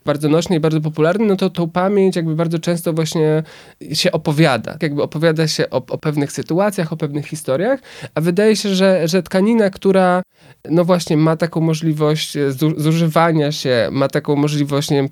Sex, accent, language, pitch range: male, native, Polish, 145-175 Hz